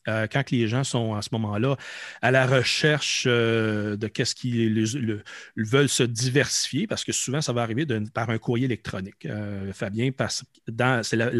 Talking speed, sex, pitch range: 165 wpm, male, 115-140 Hz